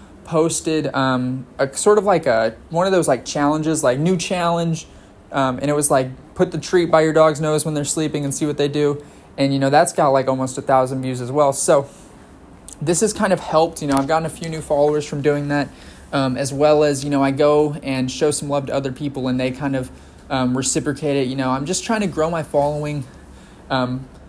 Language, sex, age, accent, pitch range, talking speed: English, male, 20-39, American, 130-155 Hz, 235 wpm